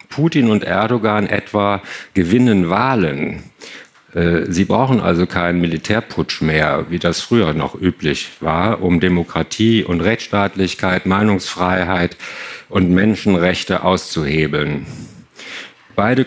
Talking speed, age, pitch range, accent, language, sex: 100 wpm, 50-69, 90-115 Hz, German, English, male